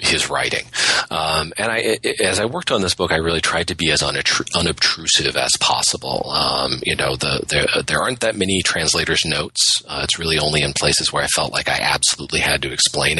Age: 40-59